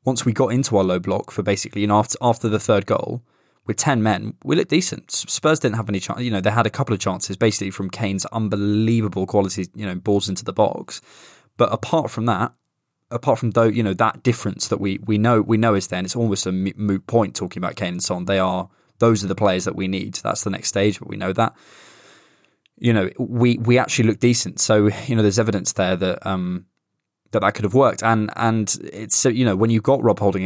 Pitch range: 100-120 Hz